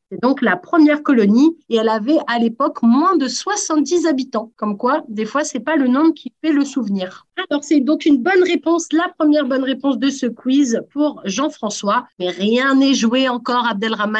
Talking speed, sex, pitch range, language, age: 205 wpm, female, 195-275 Hz, French, 30-49